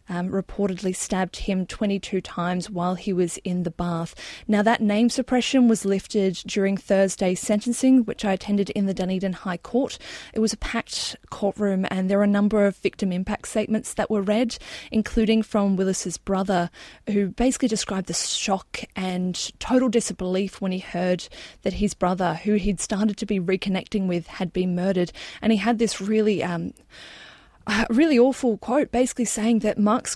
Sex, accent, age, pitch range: female, Australian, 20-39, 185-215 Hz